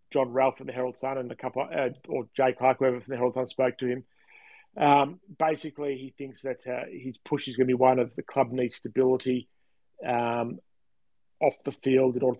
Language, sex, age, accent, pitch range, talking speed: English, male, 40-59, Australian, 125-140 Hz, 220 wpm